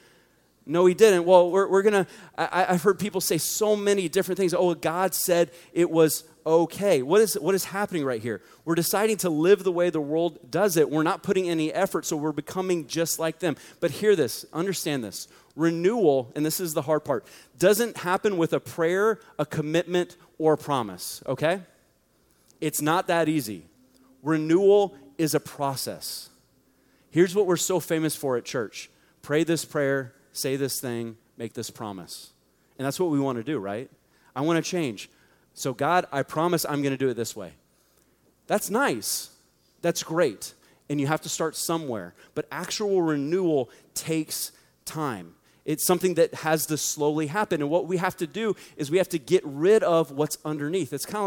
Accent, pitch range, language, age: American, 145-180 Hz, English, 30-49